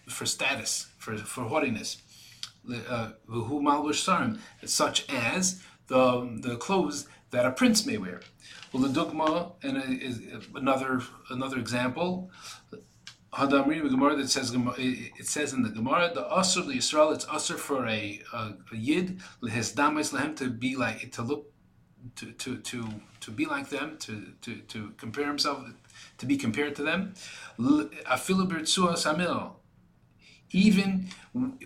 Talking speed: 125 wpm